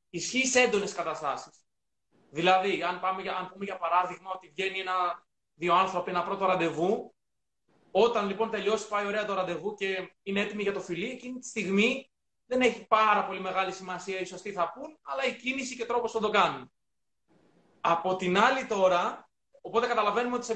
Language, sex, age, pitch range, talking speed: Greek, male, 20-39, 190-230 Hz, 180 wpm